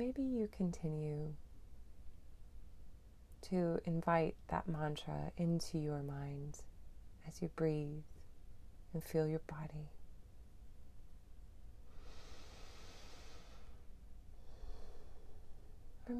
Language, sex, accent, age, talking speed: English, female, American, 30-49, 65 wpm